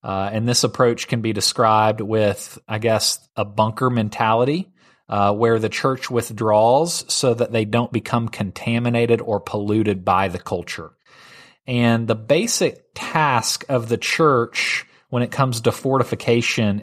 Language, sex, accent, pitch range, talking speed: English, male, American, 105-120 Hz, 145 wpm